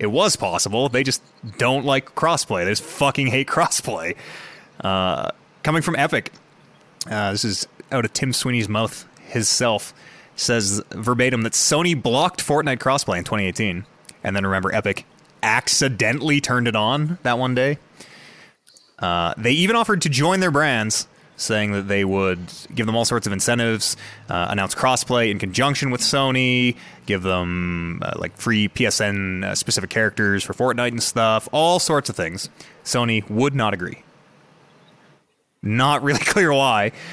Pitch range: 105-145 Hz